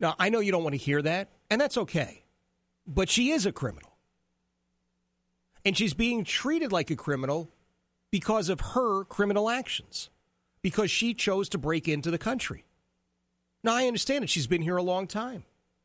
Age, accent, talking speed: 40-59, American, 180 wpm